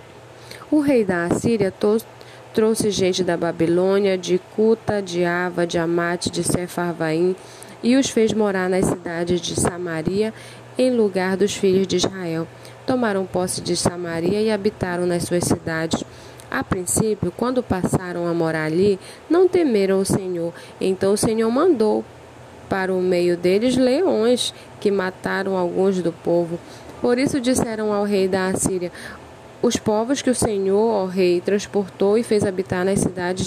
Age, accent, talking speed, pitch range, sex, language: 10-29, Brazilian, 150 wpm, 180-230 Hz, female, Portuguese